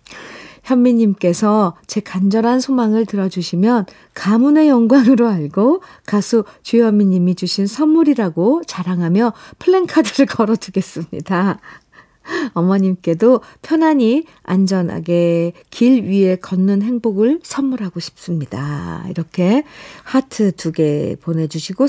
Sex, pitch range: female, 170-235 Hz